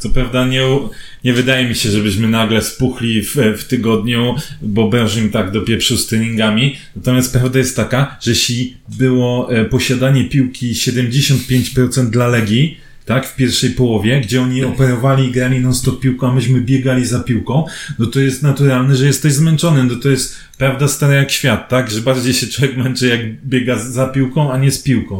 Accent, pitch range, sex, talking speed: native, 120-135 Hz, male, 185 wpm